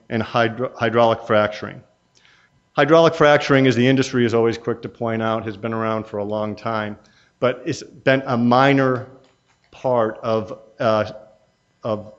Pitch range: 110-125 Hz